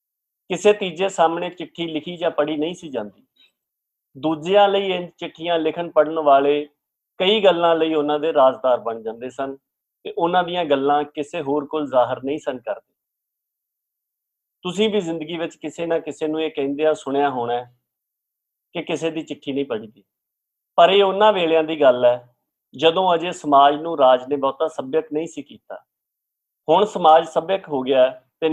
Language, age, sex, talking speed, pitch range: Punjabi, 50-69, male, 125 wpm, 140-170 Hz